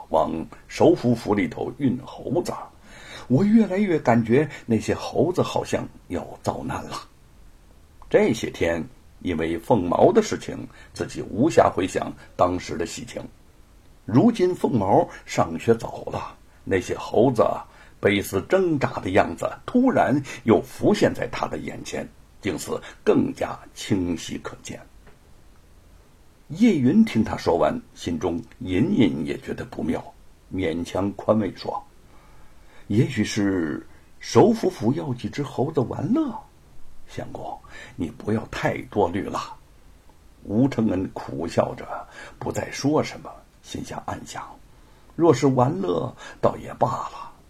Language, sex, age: Chinese, male, 60-79